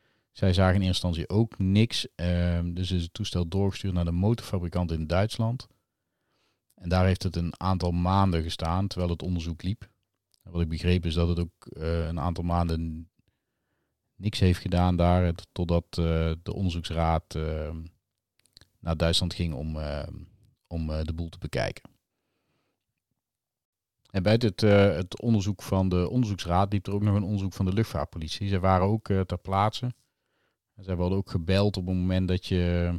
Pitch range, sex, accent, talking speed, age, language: 85-100 Hz, male, Dutch, 170 wpm, 40-59, Dutch